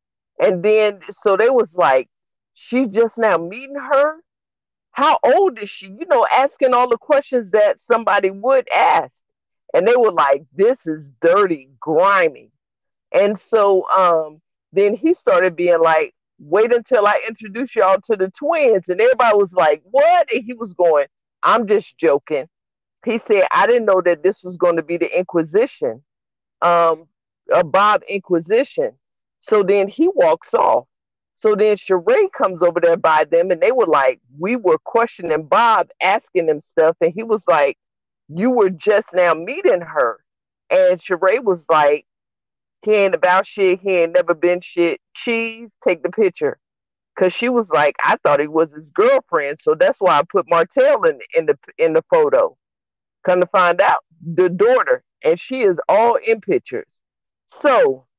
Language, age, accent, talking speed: English, 50-69, American, 165 wpm